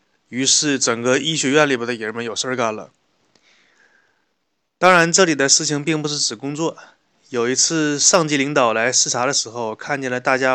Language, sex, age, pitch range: Chinese, male, 20-39, 125-155 Hz